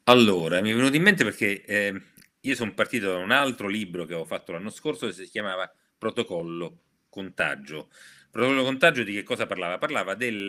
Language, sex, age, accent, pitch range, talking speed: Italian, male, 40-59, native, 95-130 Hz, 190 wpm